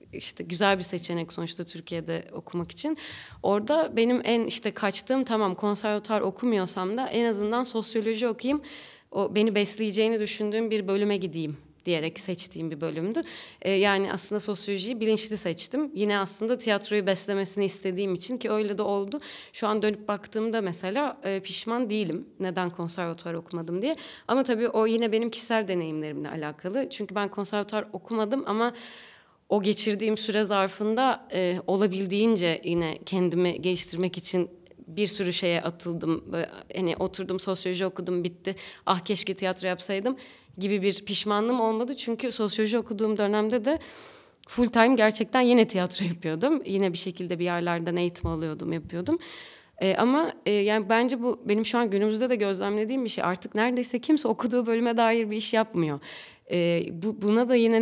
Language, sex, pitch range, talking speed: Turkish, female, 180-225 Hz, 155 wpm